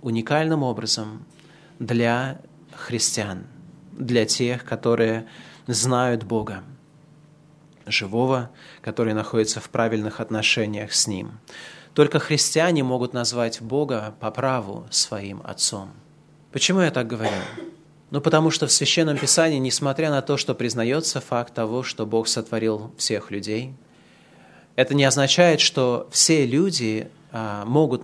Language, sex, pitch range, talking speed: Russian, male, 115-150 Hz, 120 wpm